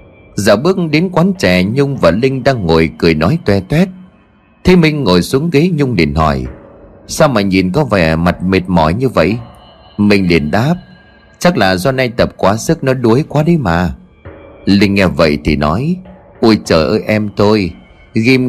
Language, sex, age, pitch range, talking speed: Vietnamese, male, 30-49, 90-135 Hz, 190 wpm